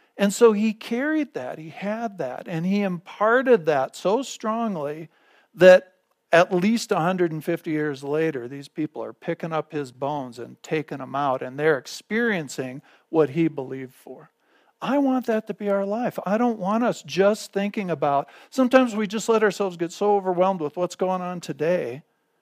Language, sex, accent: English, male, American